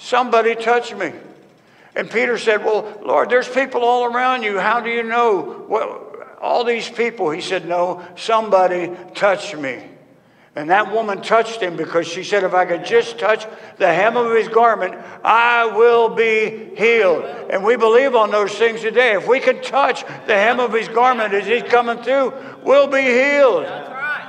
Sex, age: male, 60-79